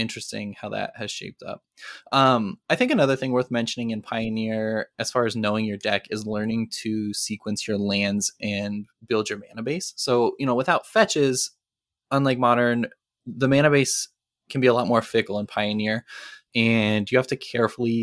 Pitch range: 110-125 Hz